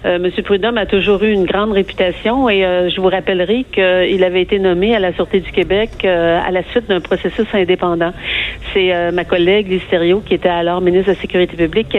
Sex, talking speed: female, 225 wpm